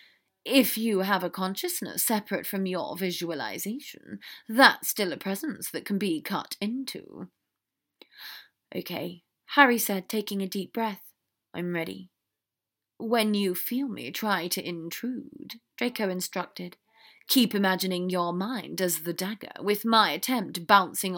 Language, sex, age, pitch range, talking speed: English, female, 30-49, 185-245 Hz, 135 wpm